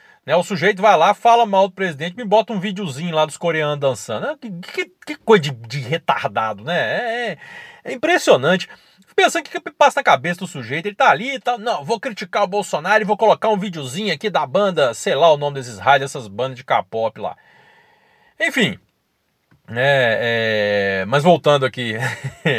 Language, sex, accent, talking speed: Portuguese, male, Brazilian, 180 wpm